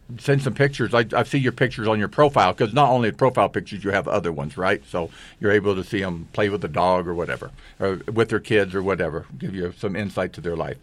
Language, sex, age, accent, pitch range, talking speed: English, male, 50-69, American, 100-125 Hz, 250 wpm